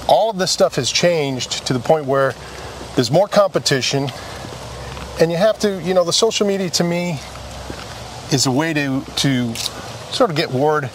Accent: American